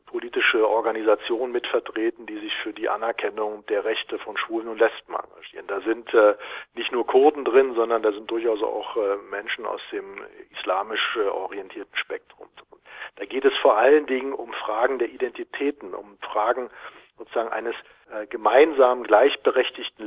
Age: 40-59